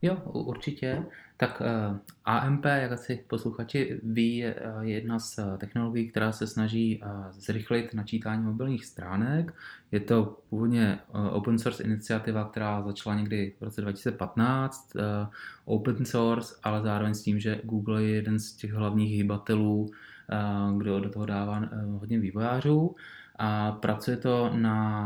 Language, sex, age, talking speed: Czech, male, 20-39, 130 wpm